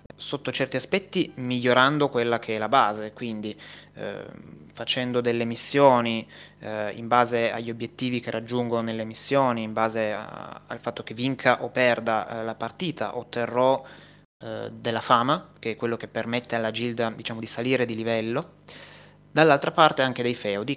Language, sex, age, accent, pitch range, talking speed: Italian, male, 20-39, native, 110-130 Hz, 160 wpm